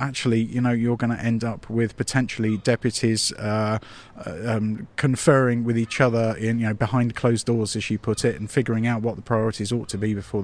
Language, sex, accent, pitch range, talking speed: English, male, British, 110-125 Hz, 215 wpm